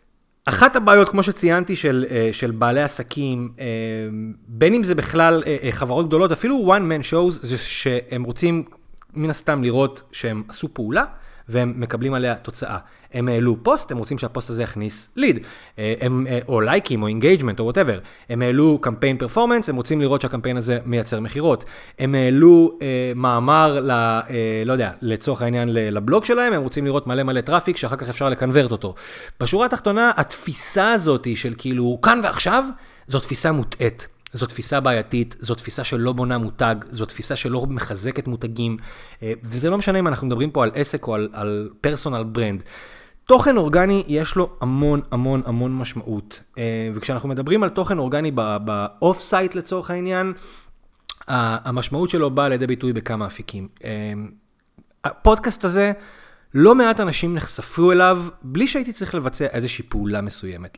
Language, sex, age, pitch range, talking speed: Hebrew, male, 30-49, 115-165 Hz, 150 wpm